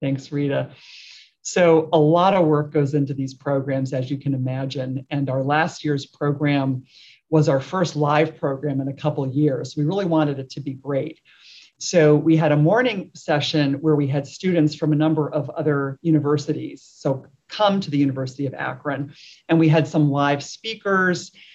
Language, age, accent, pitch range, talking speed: English, 40-59, American, 140-160 Hz, 185 wpm